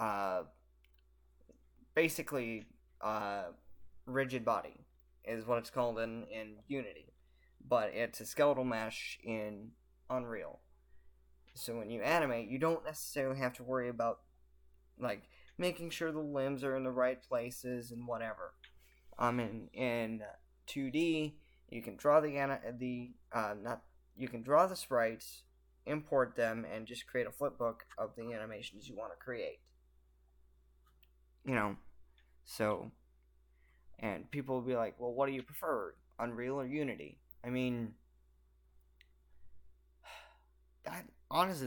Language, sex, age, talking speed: English, male, 10-29, 130 wpm